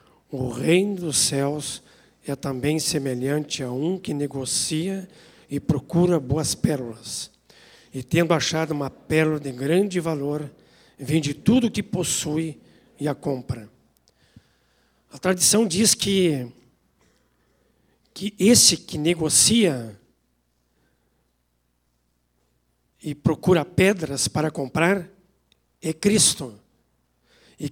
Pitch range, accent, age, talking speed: 140-205 Hz, Brazilian, 60-79, 100 wpm